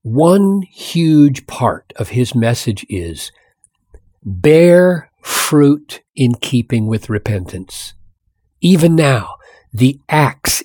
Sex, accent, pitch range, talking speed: male, American, 110-160 Hz, 95 wpm